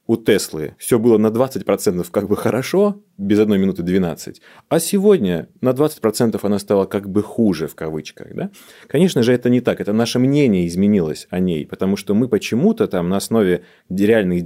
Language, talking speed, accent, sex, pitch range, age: Russian, 180 wpm, native, male, 90-120 Hz, 30-49